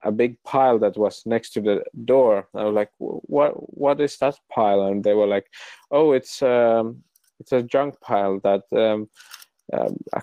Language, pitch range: English, 100-120 Hz